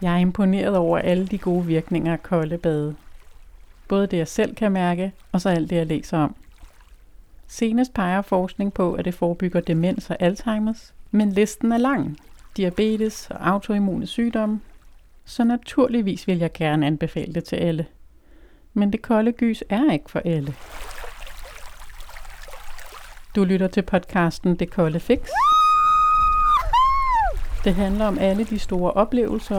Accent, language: Danish, English